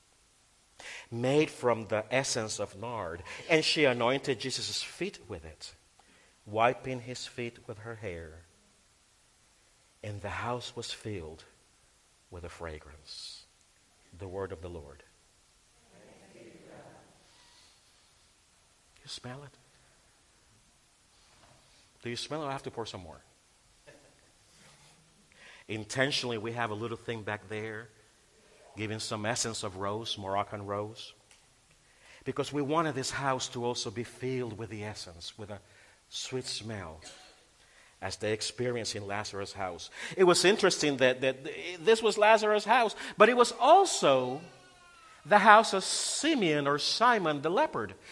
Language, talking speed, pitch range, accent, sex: English, 130 wpm, 105-160 Hz, American, male